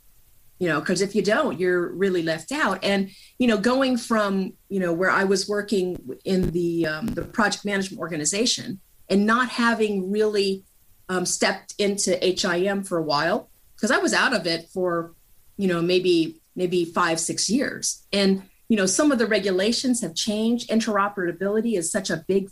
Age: 30-49